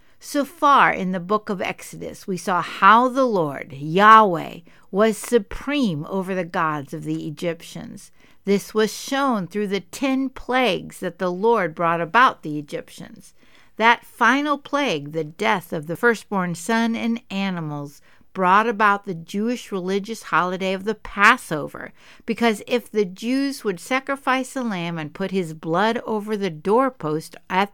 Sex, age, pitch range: female, 60-79, 175-245 Hz